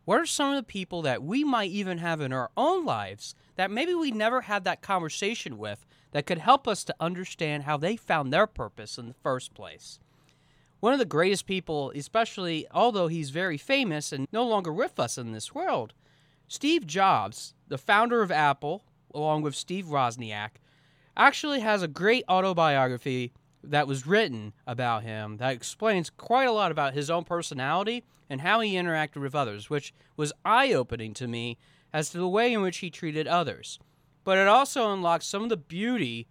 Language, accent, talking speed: English, American, 185 wpm